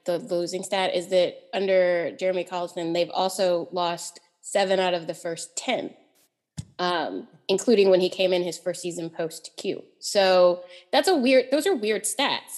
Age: 20-39